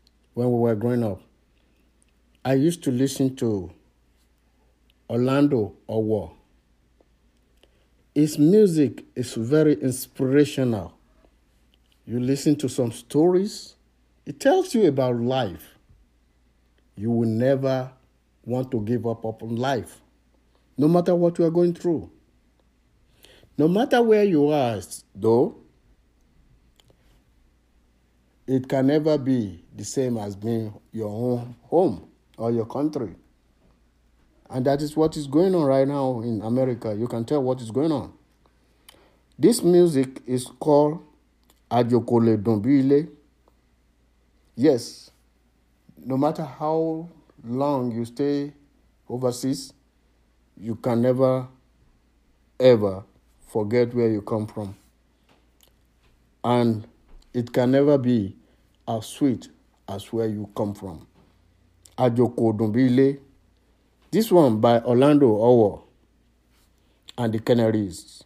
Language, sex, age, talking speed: English, male, 60-79, 110 wpm